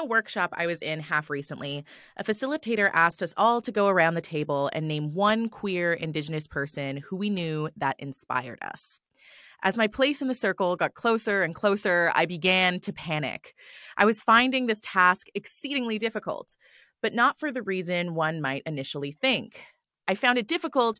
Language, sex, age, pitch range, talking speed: English, female, 20-39, 165-225 Hz, 175 wpm